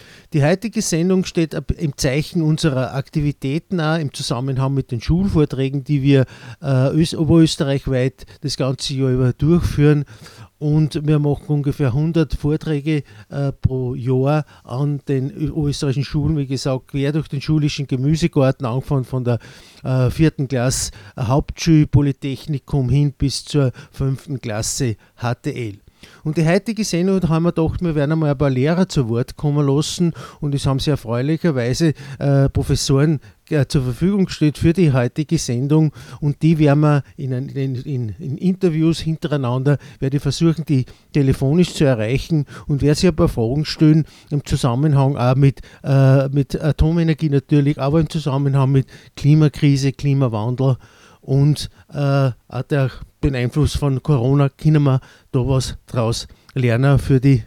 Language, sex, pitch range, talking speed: German, male, 130-155 Hz, 150 wpm